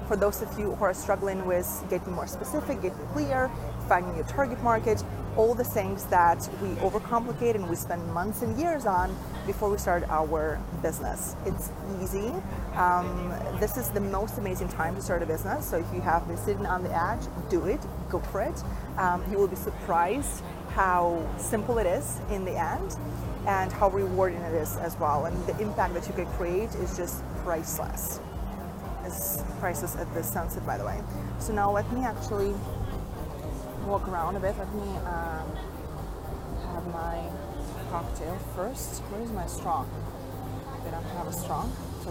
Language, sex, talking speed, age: English, female, 175 wpm, 30-49